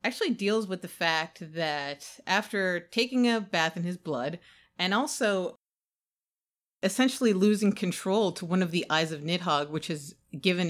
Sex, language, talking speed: female, English, 155 wpm